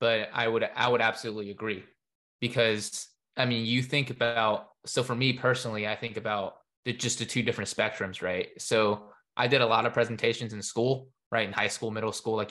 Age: 20-39